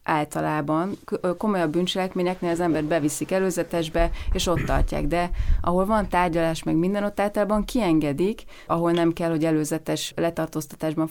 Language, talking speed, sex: Hungarian, 135 wpm, female